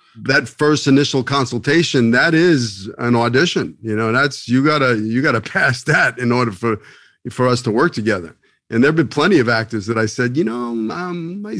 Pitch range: 120-155 Hz